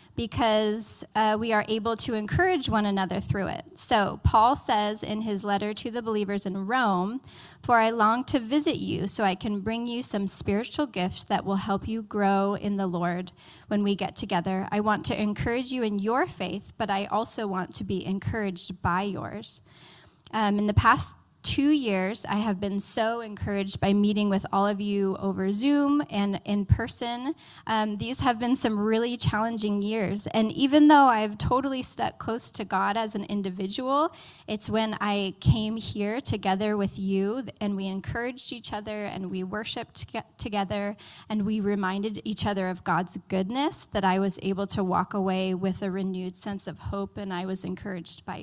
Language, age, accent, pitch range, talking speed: English, 10-29, American, 195-225 Hz, 185 wpm